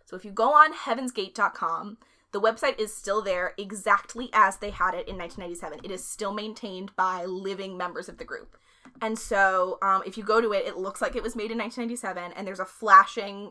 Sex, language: female, English